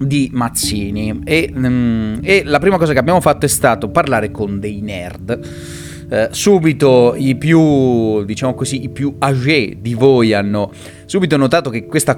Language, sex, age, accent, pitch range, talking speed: Italian, male, 30-49, native, 100-140 Hz, 160 wpm